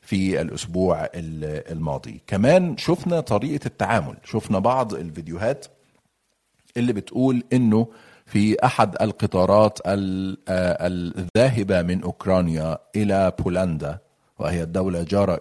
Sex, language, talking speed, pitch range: male, Arabic, 95 wpm, 85-110 Hz